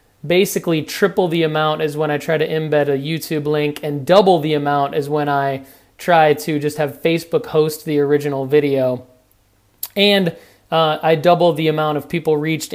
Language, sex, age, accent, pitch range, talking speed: English, male, 30-49, American, 145-165 Hz, 180 wpm